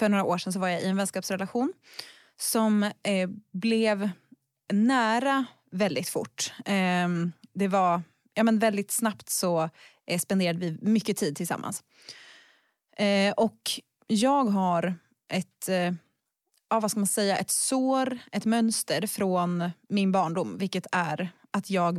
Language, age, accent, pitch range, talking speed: Swedish, 20-39, native, 175-210 Hz, 130 wpm